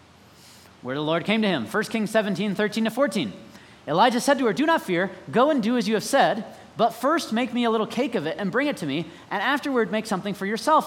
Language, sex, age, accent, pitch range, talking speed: English, male, 30-49, American, 165-230 Hz, 255 wpm